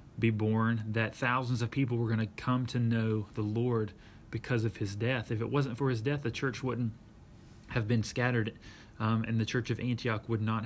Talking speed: 215 wpm